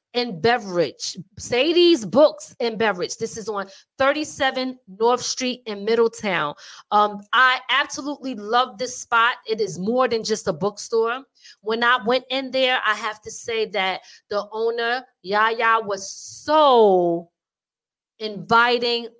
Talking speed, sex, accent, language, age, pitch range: 135 wpm, female, American, English, 30-49, 220-280 Hz